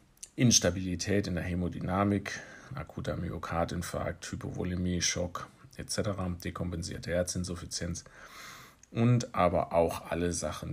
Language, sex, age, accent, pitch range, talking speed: German, male, 40-59, German, 85-100 Hz, 90 wpm